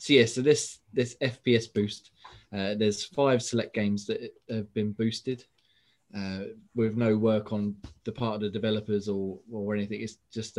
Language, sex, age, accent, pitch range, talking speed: English, male, 20-39, British, 105-115 Hz, 175 wpm